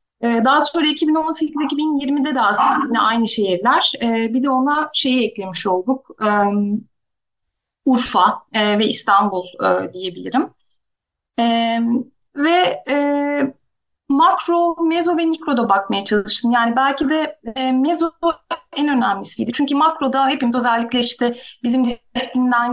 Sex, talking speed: female, 105 wpm